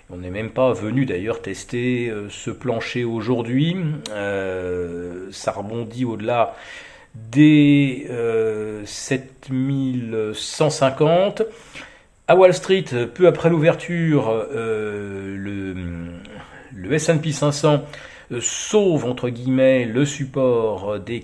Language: French